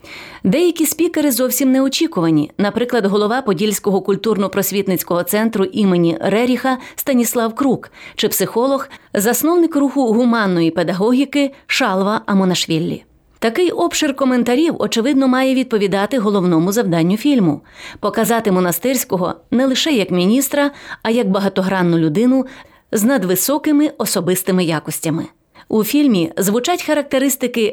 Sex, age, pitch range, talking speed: female, 30-49, 195-260 Hz, 105 wpm